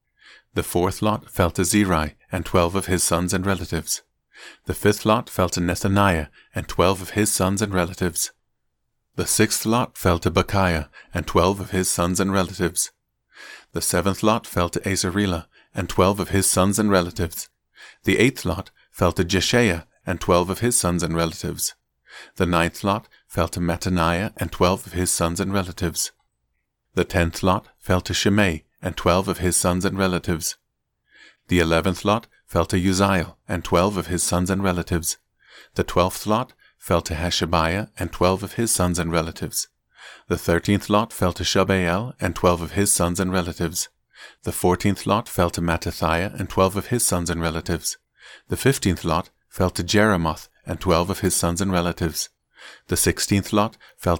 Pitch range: 85-100 Hz